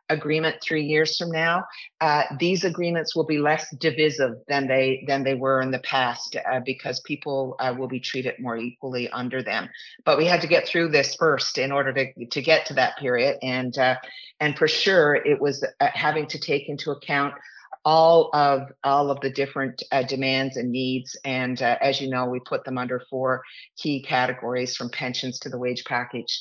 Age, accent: 50-69, American